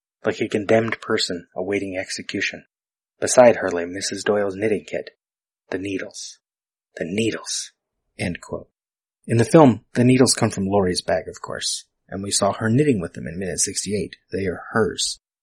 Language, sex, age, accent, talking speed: English, male, 30-49, American, 165 wpm